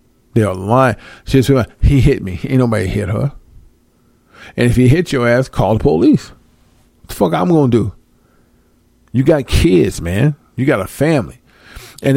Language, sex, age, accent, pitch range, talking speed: English, male, 50-69, American, 105-140 Hz, 180 wpm